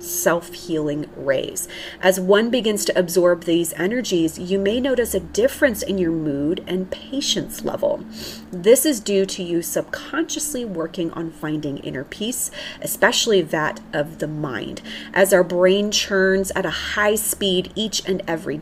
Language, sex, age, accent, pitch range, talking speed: English, female, 30-49, American, 170-205 Hz, 150 wpm